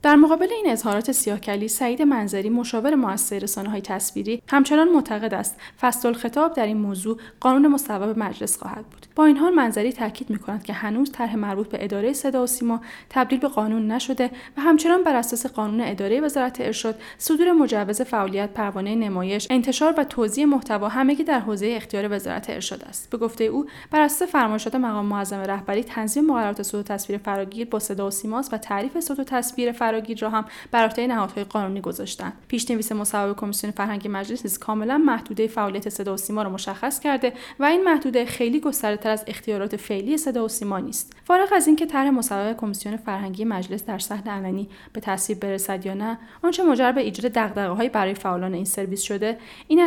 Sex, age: female, 10-29